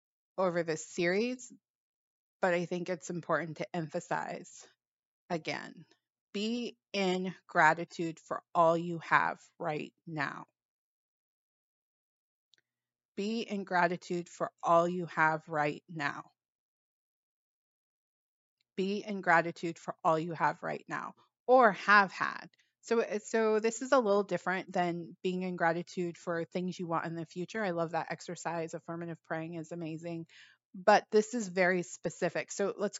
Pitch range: 165-190 Hz